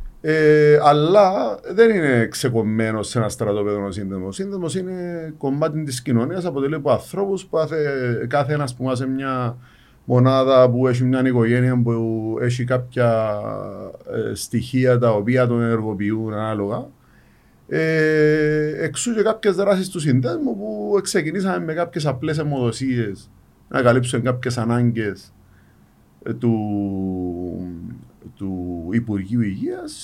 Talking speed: 110 wpm